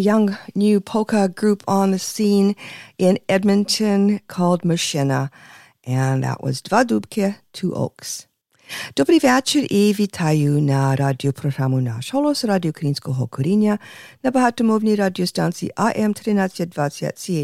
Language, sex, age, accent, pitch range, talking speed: English, female, 50-69, American, 150-210 Hz, 125 wpm